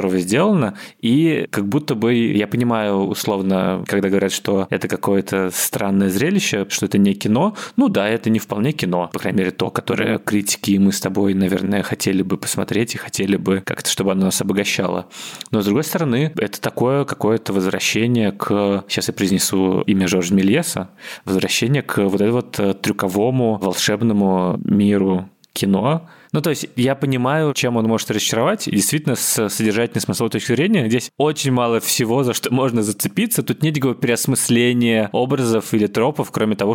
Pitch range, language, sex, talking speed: 100-120 Hz, Russian, male, 165 wpm